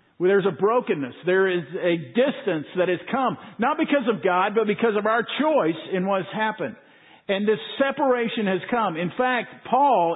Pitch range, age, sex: 180-225 Hz, 50-69, male